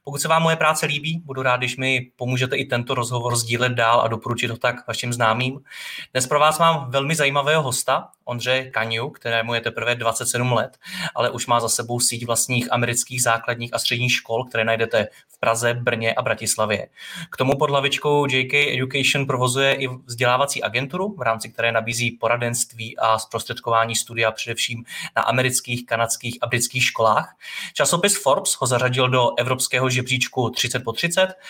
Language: Czech